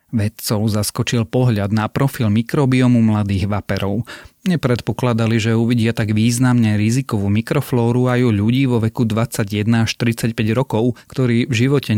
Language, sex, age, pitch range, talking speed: Slovak, male, 30-49, 105-120 Hz, 135 wpm